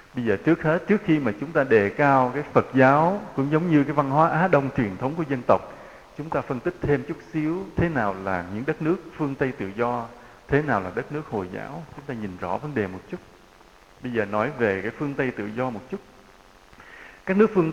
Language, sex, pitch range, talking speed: English, male, 110-155 Hz, 245 wpm